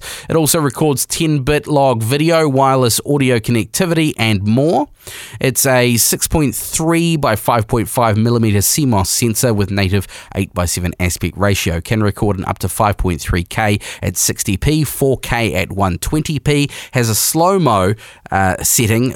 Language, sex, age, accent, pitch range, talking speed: English, male, 20-39, Australian, 100-135 Hz, 130 wpm